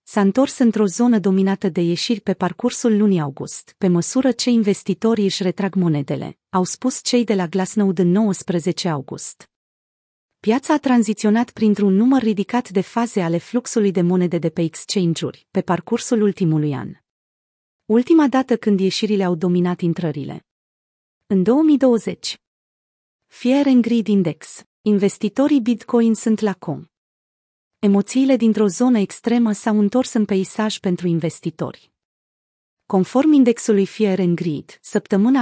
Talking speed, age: 135 wpm, 30-49